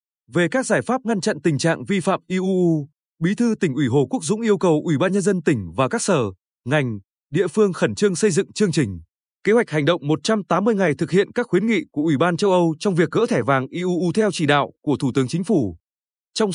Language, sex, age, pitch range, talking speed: Vietnamese, male, 20-39, 145-200 Hz, 245 wpm